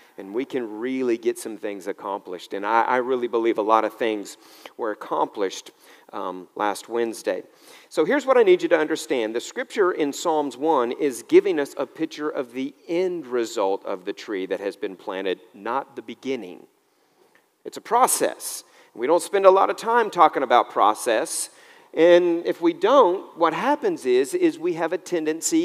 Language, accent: English, American